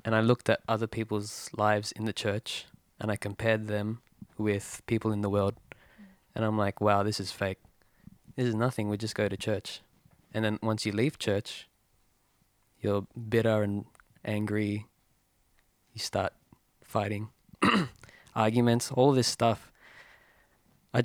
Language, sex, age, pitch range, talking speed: English, male, 20-39, 105-120 Hz, 150 wpm